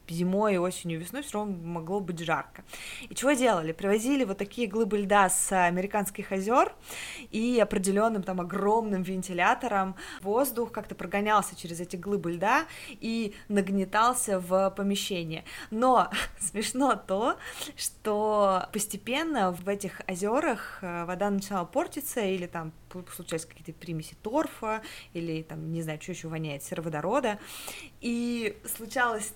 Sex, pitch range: female, 185-225 Hz